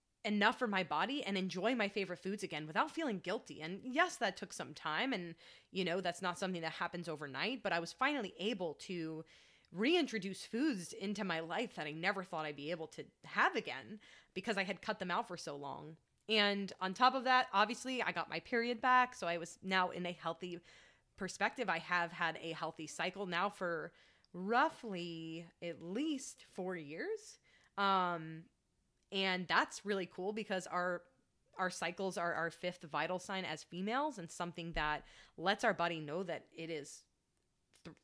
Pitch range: 170-215 Hz